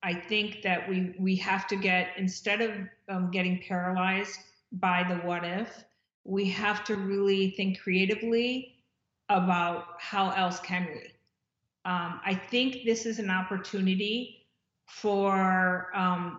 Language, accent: English, American